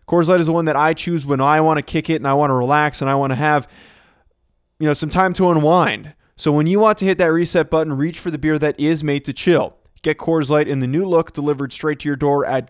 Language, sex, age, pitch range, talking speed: English, male, 20-39, 140-165 Hz, 290 wpm